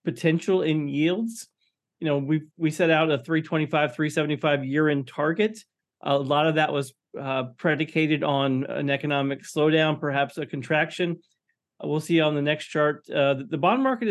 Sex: male